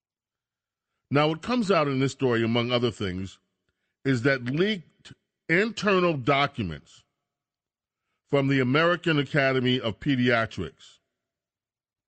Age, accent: 40-59, American